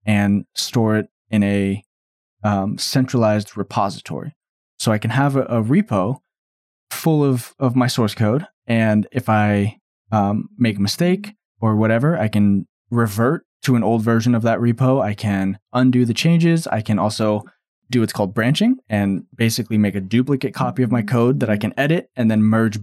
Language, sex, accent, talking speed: English, male, American, 180 wpm